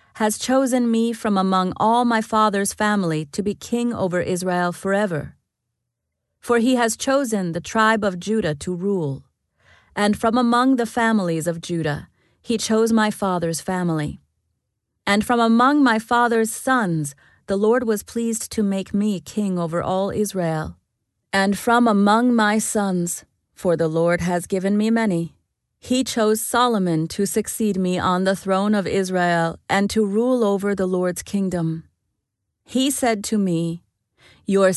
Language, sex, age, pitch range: English, female, 30-49, 170-220 Hz